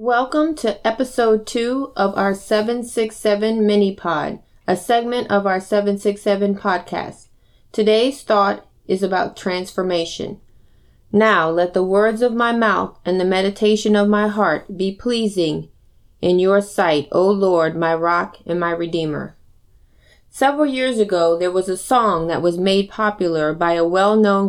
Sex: female